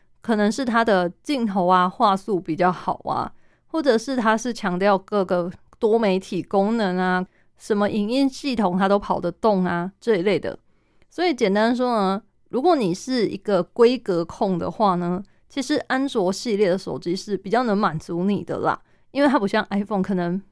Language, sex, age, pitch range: Chinese, female, 20-39, 185-230 Hz